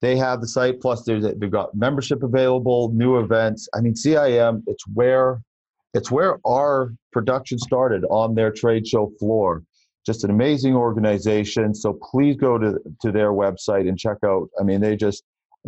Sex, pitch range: male, 105-125 Hz